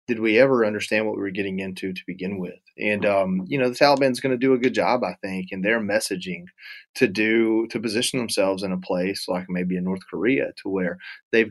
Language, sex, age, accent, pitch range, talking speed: English, male, 30-49, American, 95-115 Hz, 235 wpm